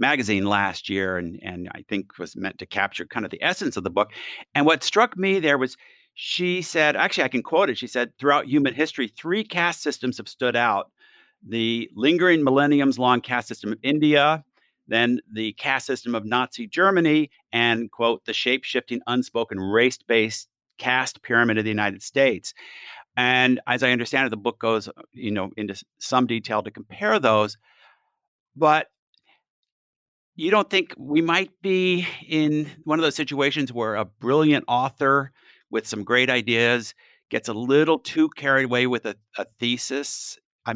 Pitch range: 115-150 Hz